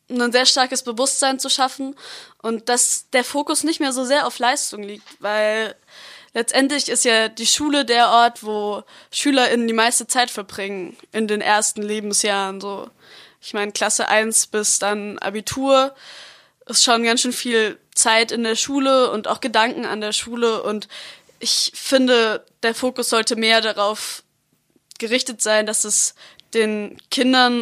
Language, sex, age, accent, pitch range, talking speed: German, female, 20-39, German, 210-255 Hz, 155 wpm